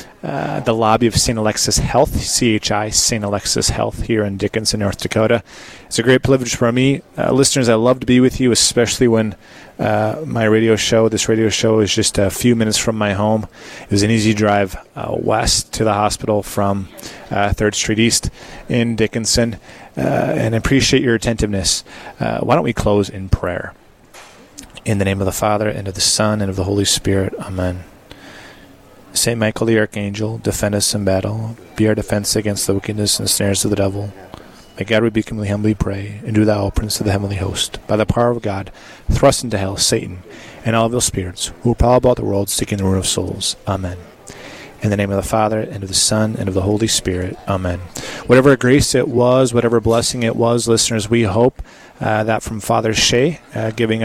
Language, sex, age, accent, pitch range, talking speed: English, male, 30-49, American, 100-115 Hz, 210 wpm